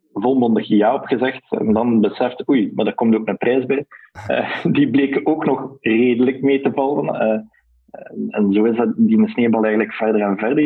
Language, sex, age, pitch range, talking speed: Dutch, male, 20-39, 105-130 Hz, 190 wpm